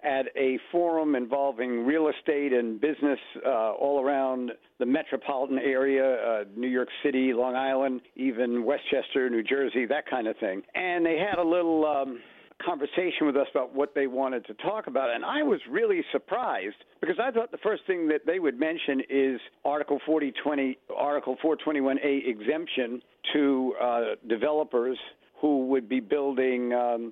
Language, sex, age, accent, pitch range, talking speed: English, male, 50-69, American, 130-155 Hz, 155 wpm